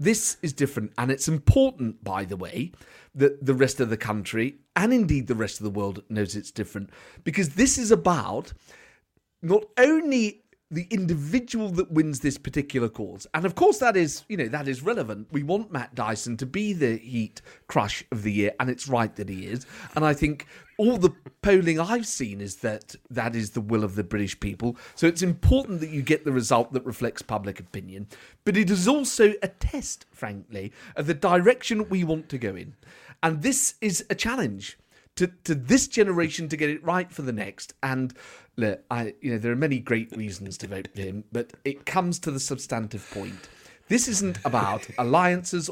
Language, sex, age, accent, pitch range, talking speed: English, male, 30-49, British, 115-185 Hz, 200 wpm